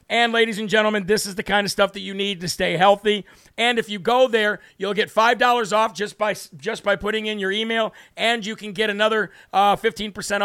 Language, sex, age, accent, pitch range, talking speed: English, male, 40-59, American, 200-235 Hz, 240 wpm